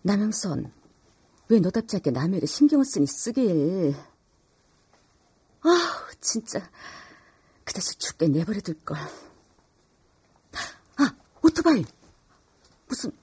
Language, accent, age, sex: Korean, native, 40-59, female